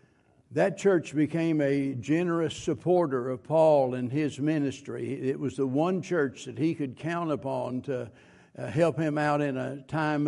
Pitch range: 130-155 Hz